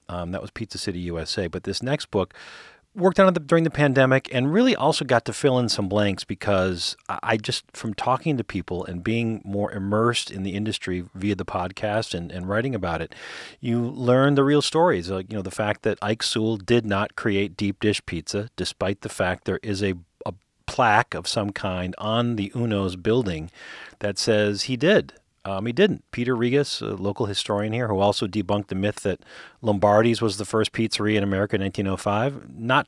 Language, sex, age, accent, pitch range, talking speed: English, male, 40-59, American, 95-115 Hz, 200 wpm